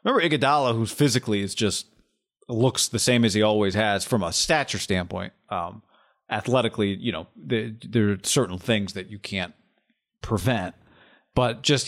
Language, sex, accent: English, male, American